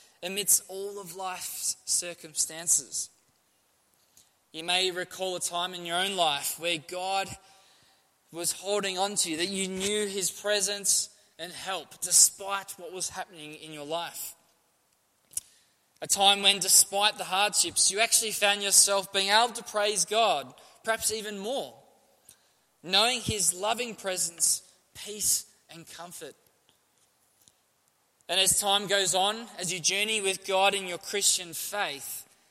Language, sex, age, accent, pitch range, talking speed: English, male, 20-39, Australian, 170-200 Hz, 135 wpm